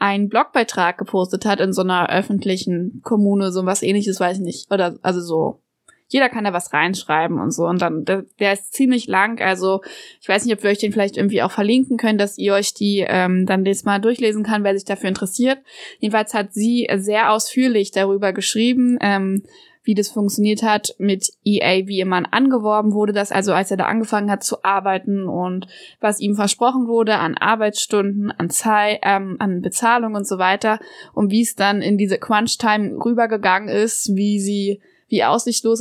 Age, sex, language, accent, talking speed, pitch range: 20-39, female, German, German, 190 wpm, 195-220 Hz